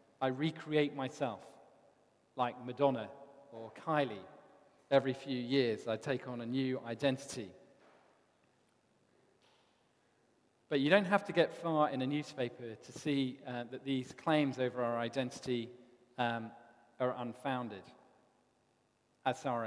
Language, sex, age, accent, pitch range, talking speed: English, male, 40-59, British, 120-140 Hz, 120 wpm